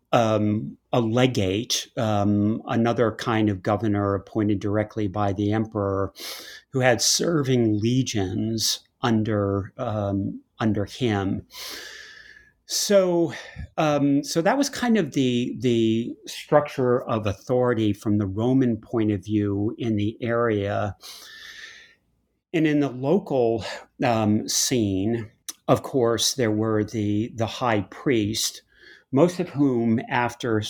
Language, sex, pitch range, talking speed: English, male, 105-130 Hz, 115 wpm